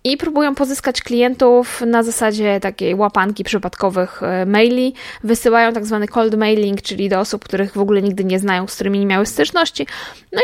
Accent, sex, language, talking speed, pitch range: native, female, Polish, 170 wpm, 205-260 Hz